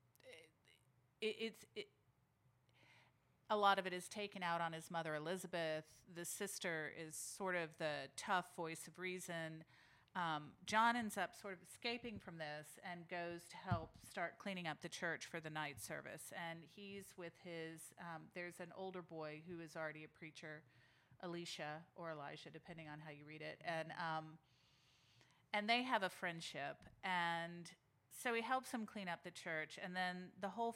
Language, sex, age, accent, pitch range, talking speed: English, female, 40-59, American, 150-185 Hz, 170 wpm